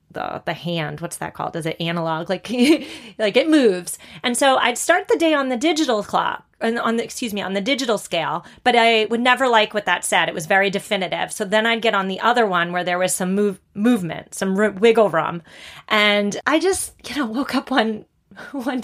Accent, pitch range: American, 195-275 Hz